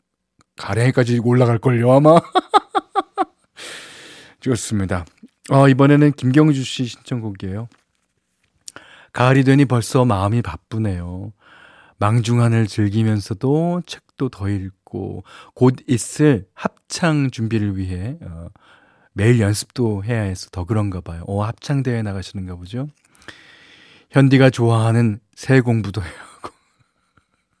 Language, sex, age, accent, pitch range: Korean, male, 40-59, native, 100-140 Hz